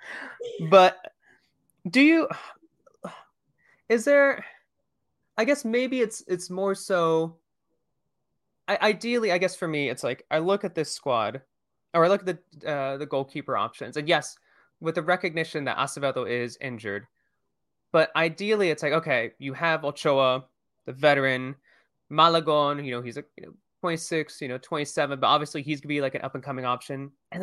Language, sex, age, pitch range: English, male, 20-39, 140-180 Hz